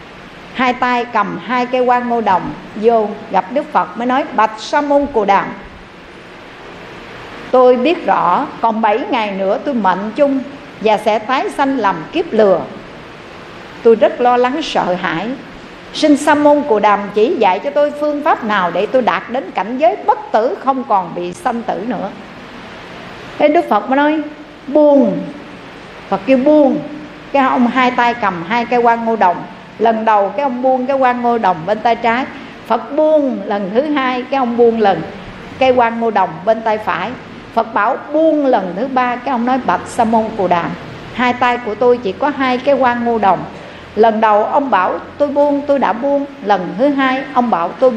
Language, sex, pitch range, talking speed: Vietnamese, female, 215-280 Hz, 185 wpm